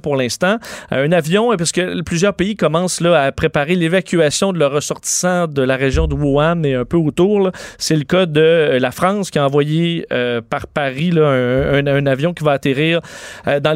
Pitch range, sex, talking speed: 145-175 Hz, male, 190 wpm